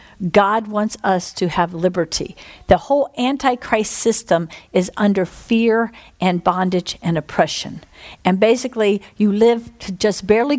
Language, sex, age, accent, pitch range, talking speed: English, female, 50-69, American, 200-245 Hz, 135 wpm